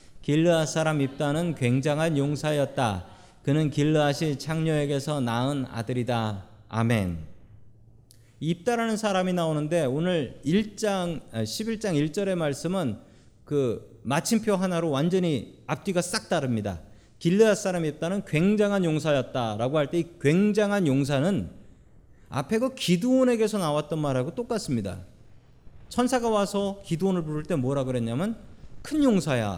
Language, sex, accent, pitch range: Korean, male, native, 115-195 Hz